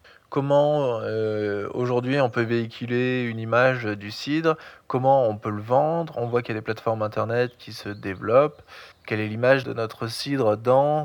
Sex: male